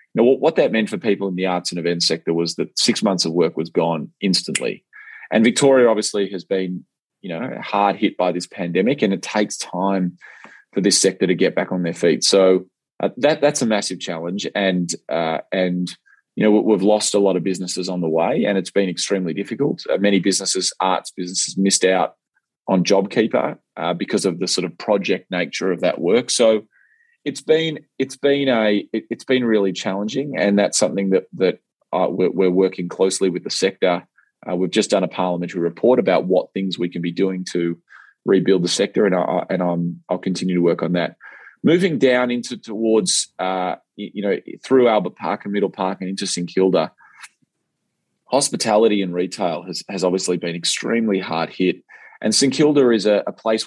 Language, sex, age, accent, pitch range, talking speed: English, male, 20-39, Australian, 90-105 Hz, 195 wpm